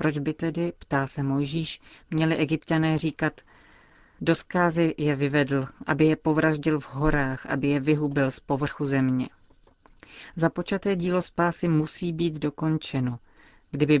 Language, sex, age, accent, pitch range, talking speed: Czech, female, 40-59, native, 140-160 Hz, 130 wpm